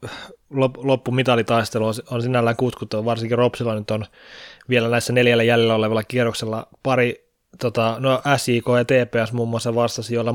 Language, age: Finnish, 20-39